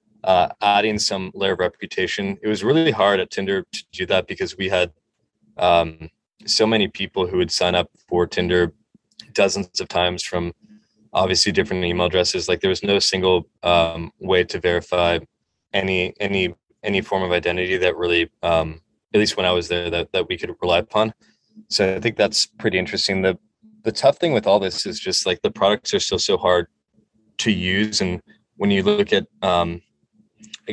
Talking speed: 190 wpm